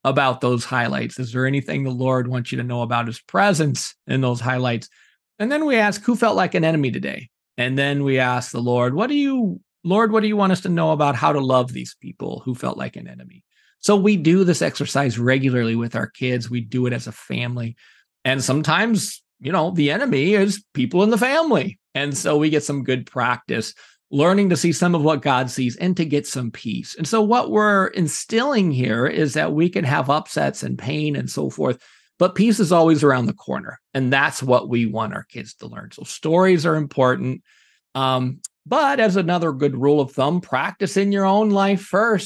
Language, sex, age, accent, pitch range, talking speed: English, male, 40-59, American, 125-185 Hz, 215 wpm